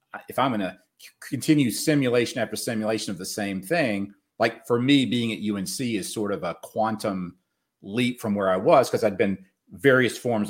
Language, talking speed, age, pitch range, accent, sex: English, 190 wpm, 40-59, 105-130 Hz, American, male